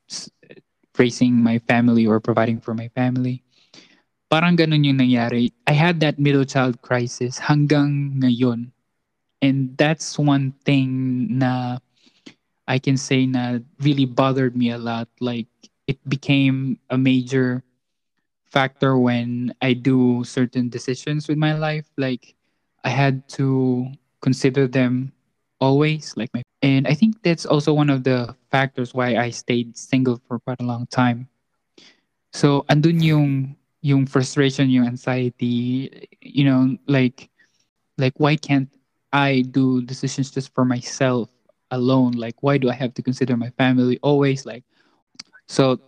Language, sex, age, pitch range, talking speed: Filipino, male, 20-39, 125-140 Hz, 140 wpm